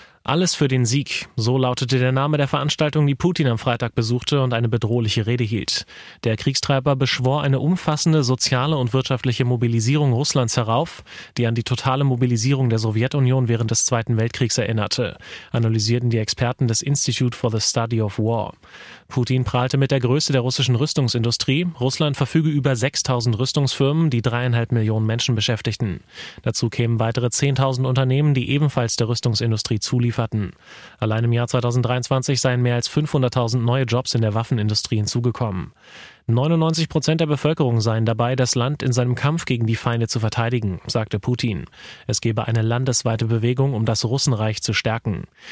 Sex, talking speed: male, 165 wpm